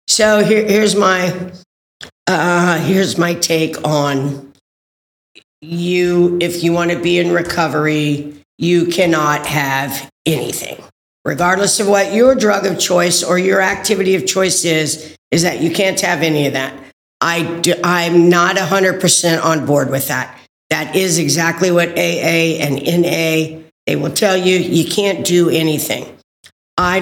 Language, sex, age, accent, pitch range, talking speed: English, female, 50-69, American, 155-190 Hz, 150 wpm